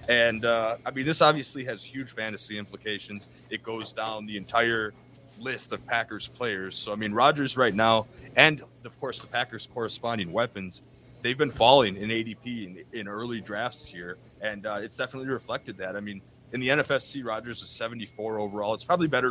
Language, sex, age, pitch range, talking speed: English, male, 30-49, 100-125 Hz, 185 wpm